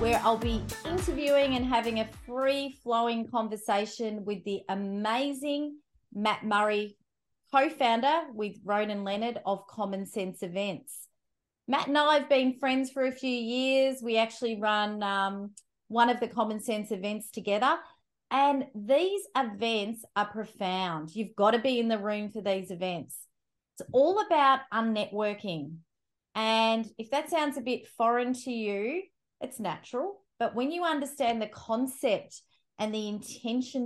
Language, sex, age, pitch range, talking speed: English, female, 30-49, 210-265 Hz, 150 wpm